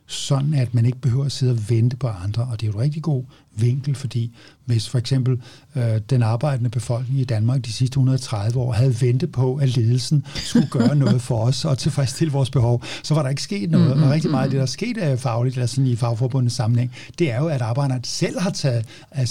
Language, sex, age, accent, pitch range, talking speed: Danish, male, 60-79, native, 120-140 Hz, 235 wpm